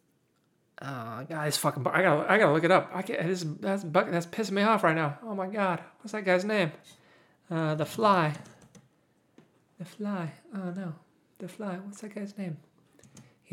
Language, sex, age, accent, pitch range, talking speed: English, male, 30-49, American, 135-185 Hz, 185 wpm